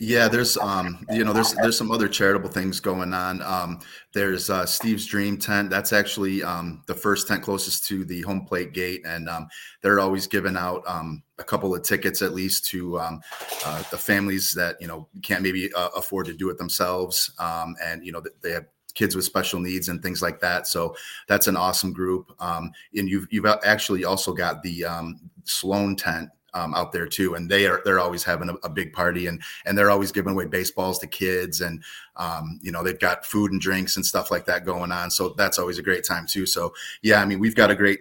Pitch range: 90-100 Hz